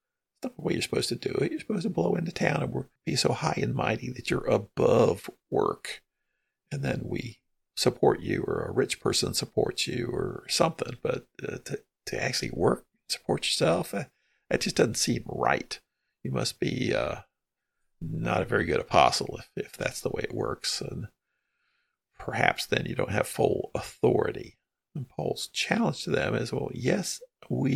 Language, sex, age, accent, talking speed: English, male, 50-69, American, 180 wpm